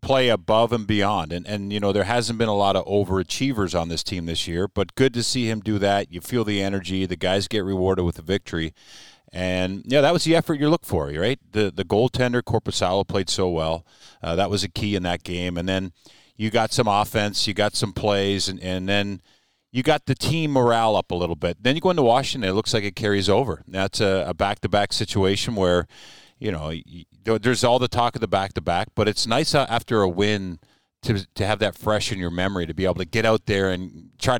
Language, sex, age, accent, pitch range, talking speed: English, male, 40-59, American, 95-115 Hz, 235 wpm